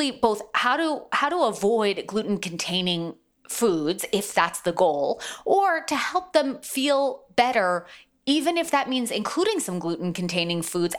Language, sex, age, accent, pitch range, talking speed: English, female, 20-39, American, 155-215 Hz, 155 wpm